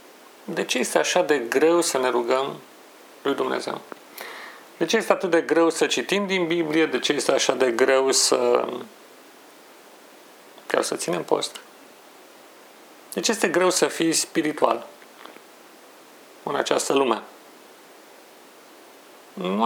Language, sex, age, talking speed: Romanian, male, 40-59, 130 wpm